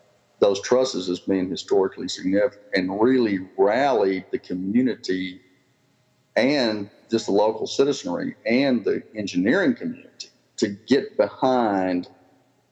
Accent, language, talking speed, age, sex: American, English, 110 wpm, 40-59, male